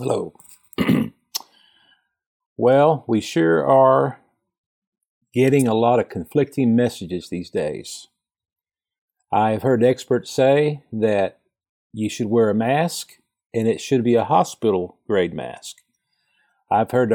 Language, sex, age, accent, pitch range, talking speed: English, male, 50-69, American, 110-135 Hz, 115 wpm